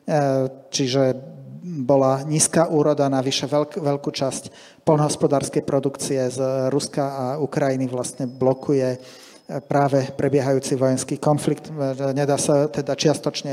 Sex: male